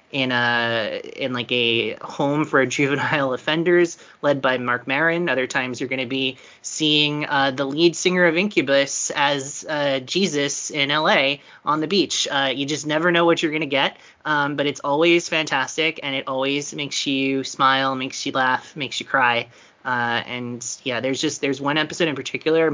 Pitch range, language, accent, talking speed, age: 120-145 Hz, English, American, 185 wpm, 30-49